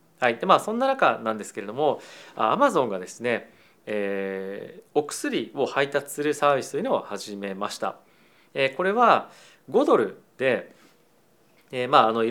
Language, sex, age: Japanese, male, 40-59